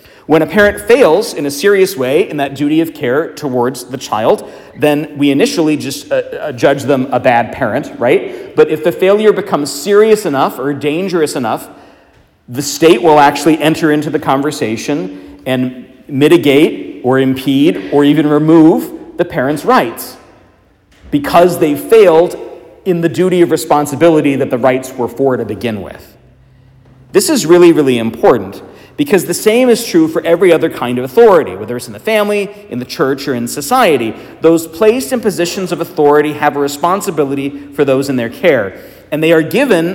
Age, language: 40-59, English